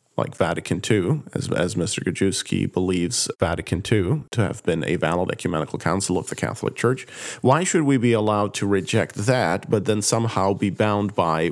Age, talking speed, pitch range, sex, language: 40-59, 180 wpm, 95-125 Hz, male, English